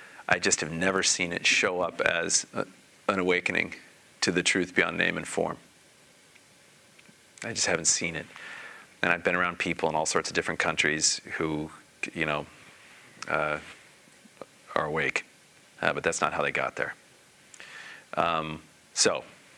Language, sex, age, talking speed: English, male, 40-59, 155 wpm